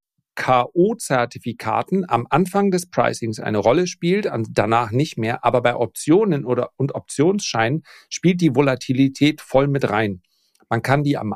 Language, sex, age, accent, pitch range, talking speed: German, male, 40-59, German, 115-150 Hz, 150 wpm